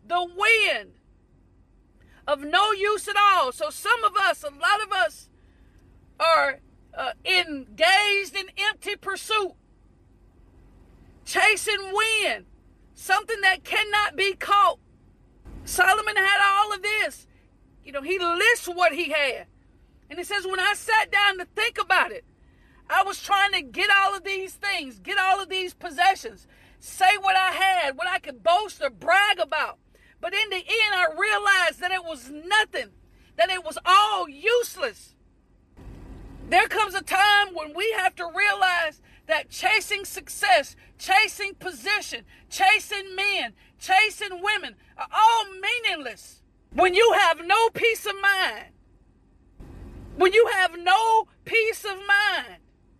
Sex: female